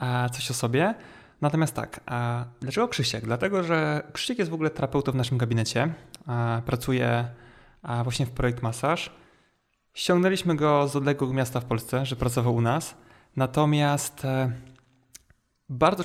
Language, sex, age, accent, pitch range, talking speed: Polish, male, 20-39, native, 125-150 Hz, 130 wpm